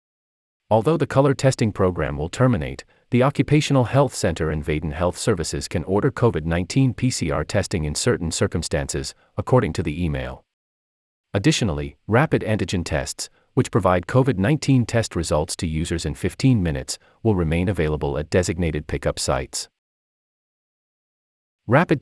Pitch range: 75-110 Hz